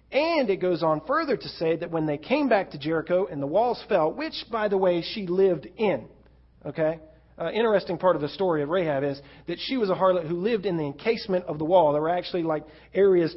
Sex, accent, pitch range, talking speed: male, American, 125-185 Hz, 240 wpm